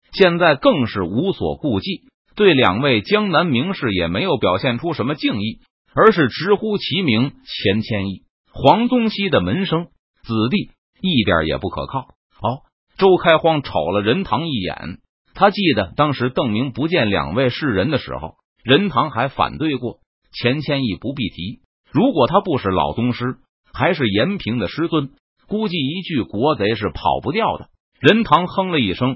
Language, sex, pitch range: Chinese, male, 125-200 Hz